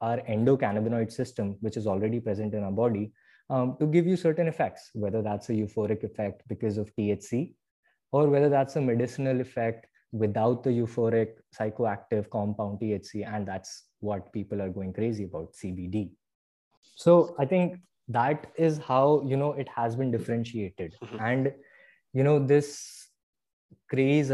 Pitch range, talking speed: 105-130 Hz, 155 wpm